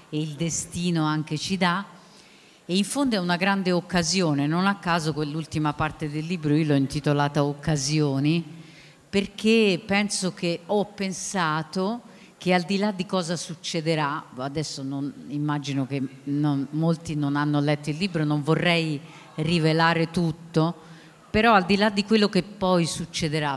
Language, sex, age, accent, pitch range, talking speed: Italian, female, 50-69, native, 150-185 Hz, 150 wpm